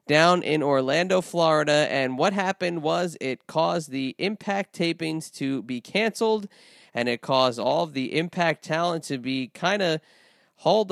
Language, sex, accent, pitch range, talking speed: English, male, American, 135-180 Hz, 160 wpm